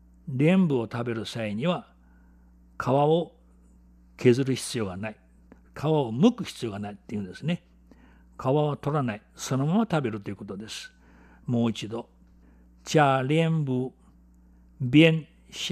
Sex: male